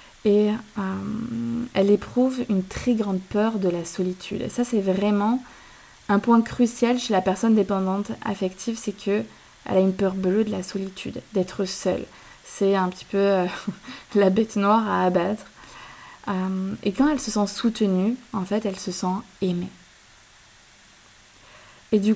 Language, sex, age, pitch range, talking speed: French, female, 20-39, 190-220 Hz, 155 wpm